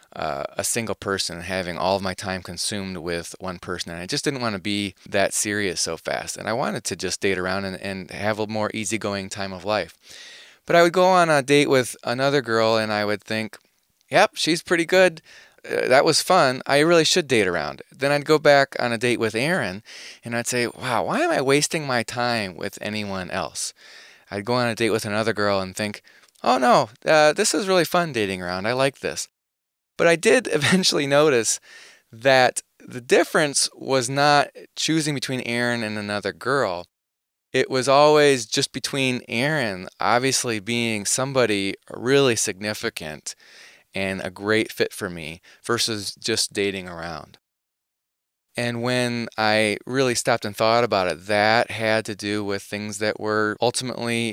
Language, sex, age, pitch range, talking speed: English, male, 30-49, 100-130 Hz, 185 wpm